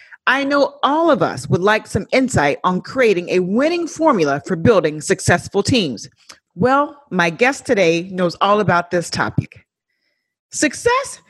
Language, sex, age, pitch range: English, female, 40-59, 175-255 Hz